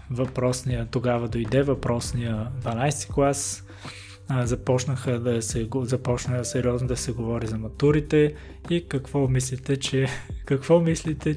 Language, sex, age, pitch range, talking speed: Bulgarian, male, 20-39, 120-140 Hz, 115 wpm